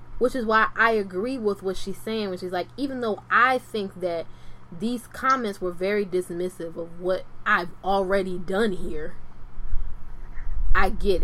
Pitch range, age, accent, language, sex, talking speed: 180-260 Hz, 10-29, American, English, female, 160 wpm